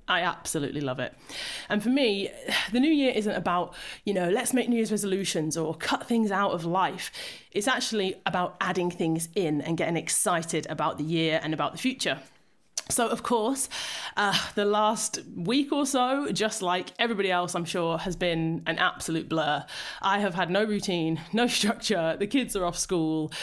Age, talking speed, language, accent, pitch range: 30-49, 185 wpm, English, British, 170-225 Hz